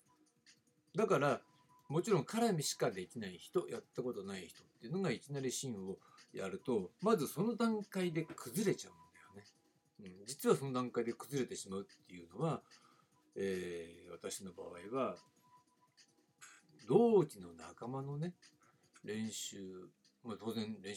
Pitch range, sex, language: 125-185 Hz, male, Japanese